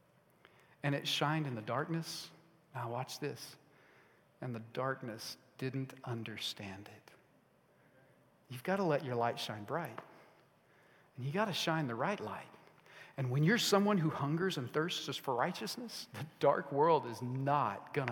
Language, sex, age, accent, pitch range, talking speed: English, male, 40-59, American, 135-170 Hz, 160 wpm